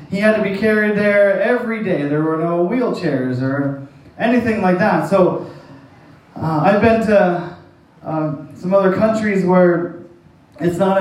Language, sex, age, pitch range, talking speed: English, male, 20-39, 145-185 Hz, 155 wpm